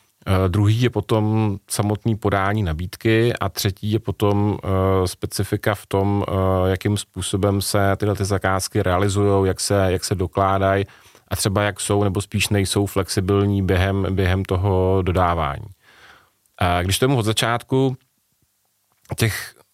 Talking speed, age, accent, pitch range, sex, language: 125 wpm, 30-49, native, 95-110 Hz, male, Czech